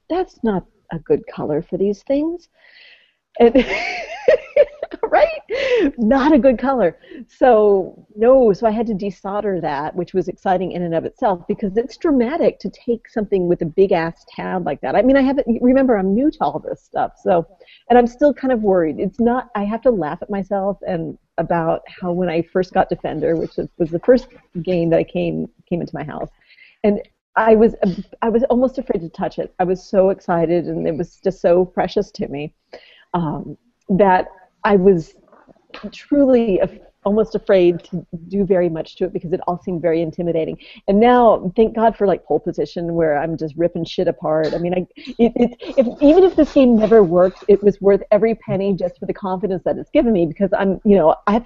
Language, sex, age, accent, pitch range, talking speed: English, female, 40-59, American, 175-245 Hz, 205 wpm